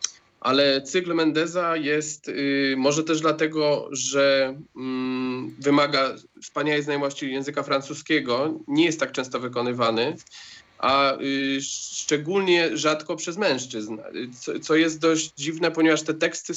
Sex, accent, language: male, native, Polish